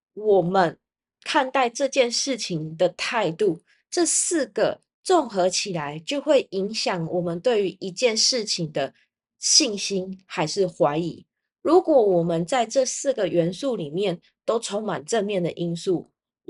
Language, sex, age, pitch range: Chinese, female, 20-39, 175-245 Hz